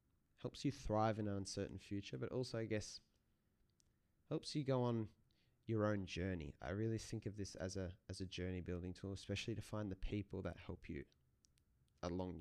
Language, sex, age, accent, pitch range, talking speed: English, male, 20-39, Australian, 85-105 Hz, 190 wpm